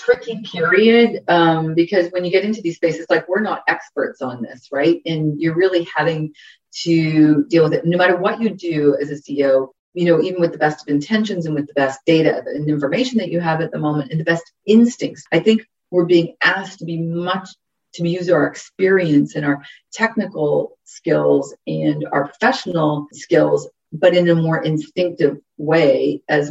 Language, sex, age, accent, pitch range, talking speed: English, female, 40-59, American, 145-180 Hz, 190 wpm